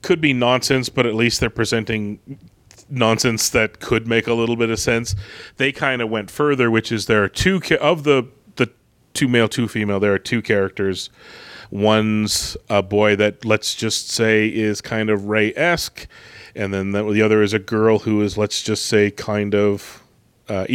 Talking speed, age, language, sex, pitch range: 190 wpm, 30-49, English, male, 105-130 Hz